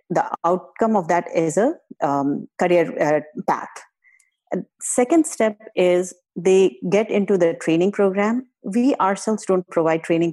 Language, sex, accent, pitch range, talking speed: English, female, Indian, 165-205 Hz, 140 wpm